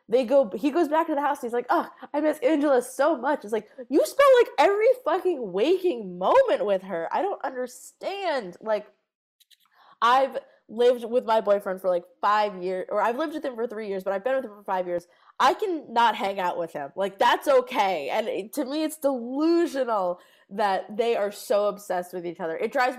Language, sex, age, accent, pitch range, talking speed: English, female, 20-39, American, 180-250 Hz, 210 wpm